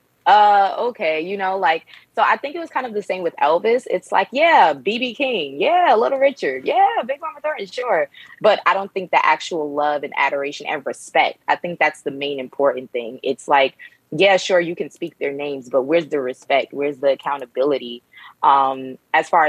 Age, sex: 20-39, female